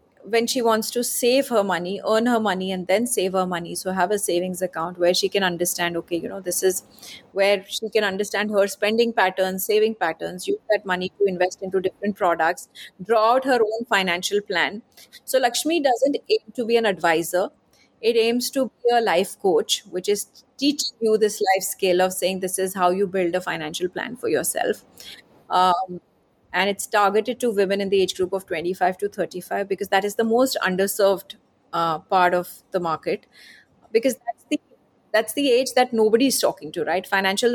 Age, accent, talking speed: 30-49, Indian, 195 wpm